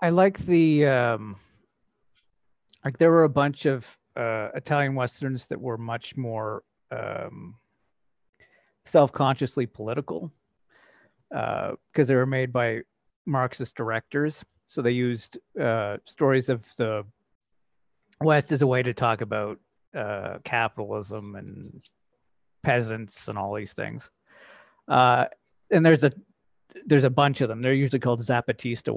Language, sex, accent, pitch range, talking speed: English, male, American, 120-150 Hz, 130 wpm